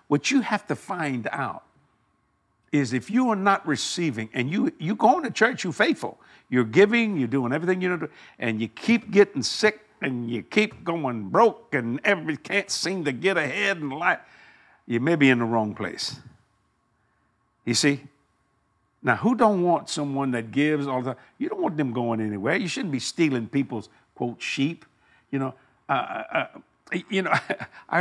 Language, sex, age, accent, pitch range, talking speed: English, male, 60-79, American, 125-195 Hz, 185 wpm